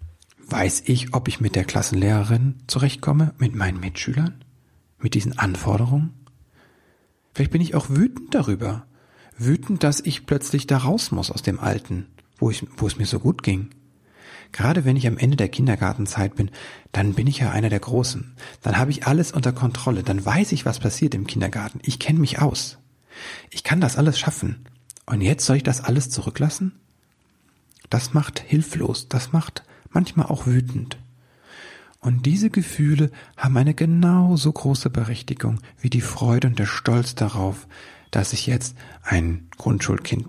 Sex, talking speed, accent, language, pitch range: male, 160 wpm, German, German, 105-135 Hz